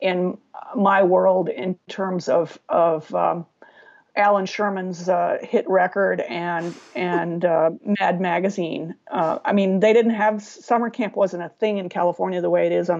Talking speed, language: 165 wpm, English